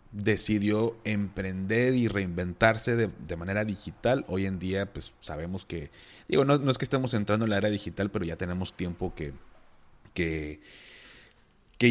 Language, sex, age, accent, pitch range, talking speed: Spanish, male, 30-49, Mexican, 95-125 Hz, 155 wpm